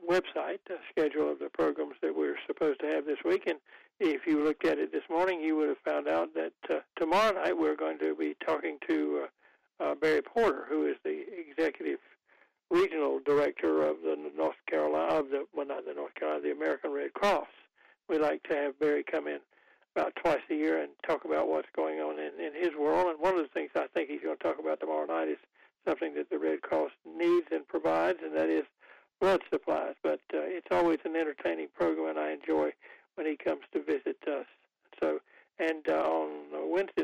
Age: 60-79